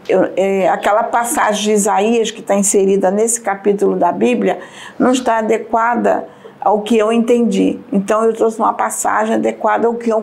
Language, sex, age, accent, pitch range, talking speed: Portuguese, female, 50-69, Brazilian, 200-235 Hz, 170 wpm